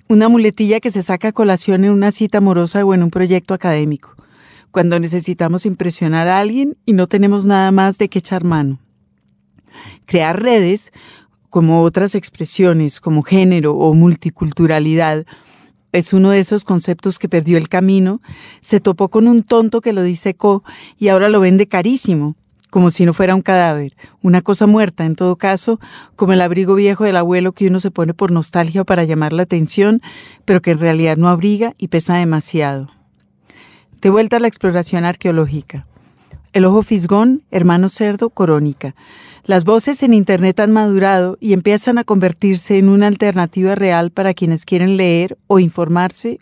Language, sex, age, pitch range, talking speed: Spanish, female, 40-59, 170-205 Hz, 170 wpm